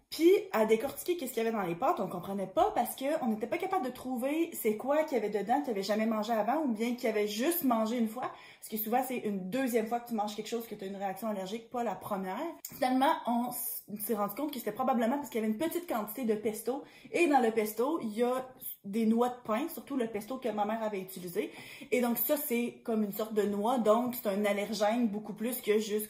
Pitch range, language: 210-270 Hz, French